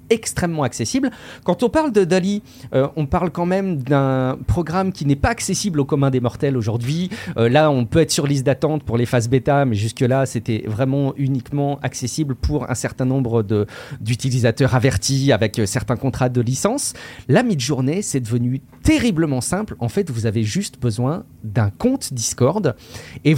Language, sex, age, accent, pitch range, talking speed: French, male, 40-59, French, 125-165 Hz, 180 wpm